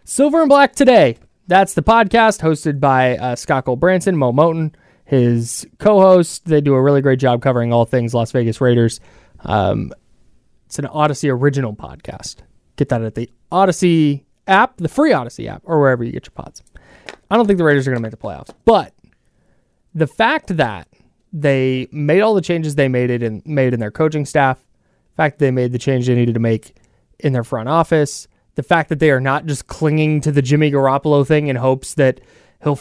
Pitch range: 125-160 Hz